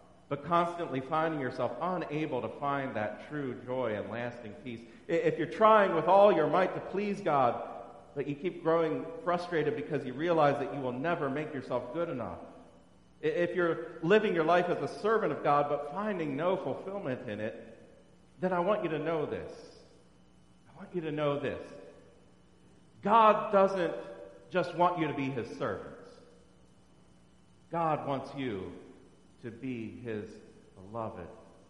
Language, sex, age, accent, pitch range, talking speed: English, male, 40-59, American, 105-170 Hz, 160 wpm